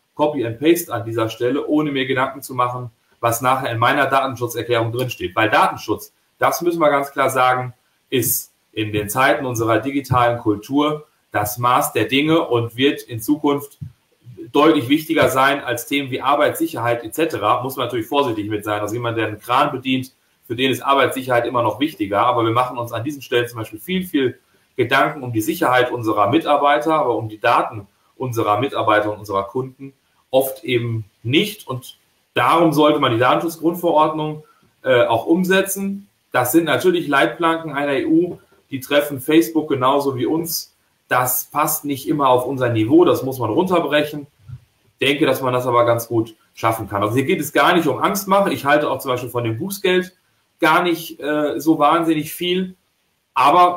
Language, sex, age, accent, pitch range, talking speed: German, male, 40-59, German, 120-155 Hz, 180 wpm